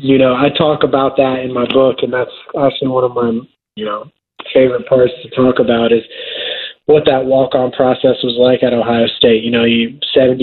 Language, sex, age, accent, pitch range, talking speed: English, male, 20-39, American, 125-140 Hz, 205 wpm